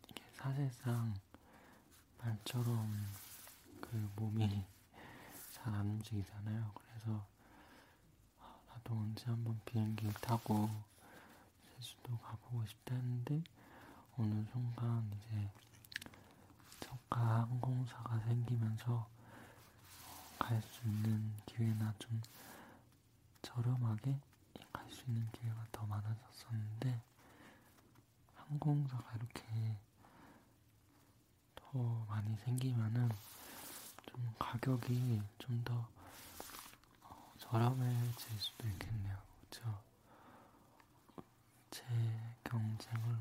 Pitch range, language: 110-120 Hz, Korean